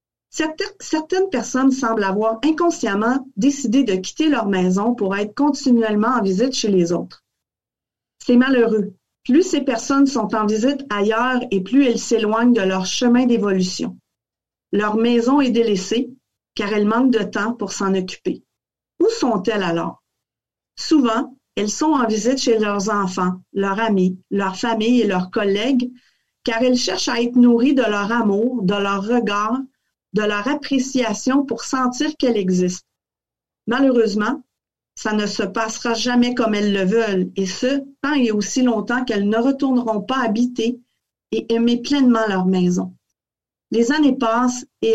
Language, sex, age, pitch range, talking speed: French, female, 40-59, 205-255 Hz, 150 wpm